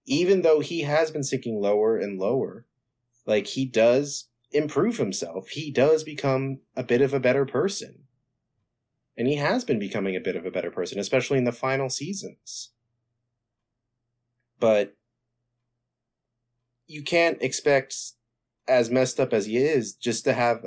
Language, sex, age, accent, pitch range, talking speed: English, male, 30-49, American, 110-130 Hz, 150 wpm